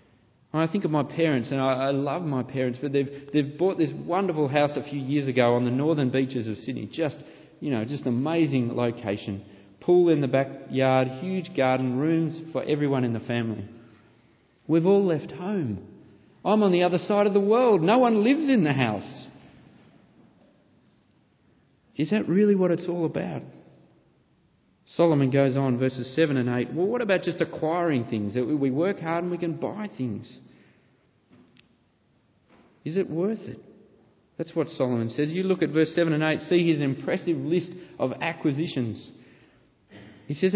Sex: male